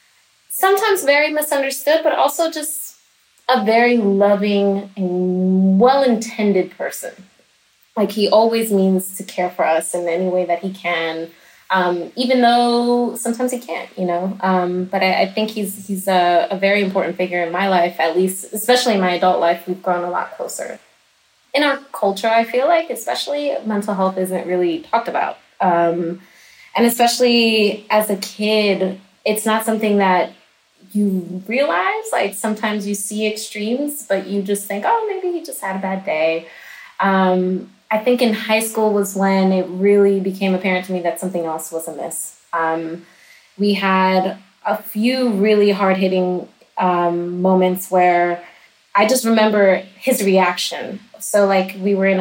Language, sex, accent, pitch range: English, female, American, 180-220 Hz